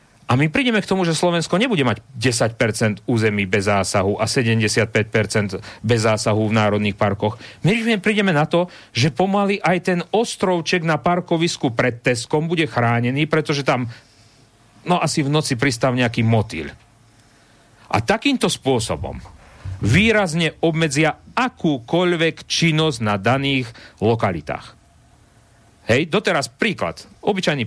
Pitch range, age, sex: 115-155 Hz, 40-59, male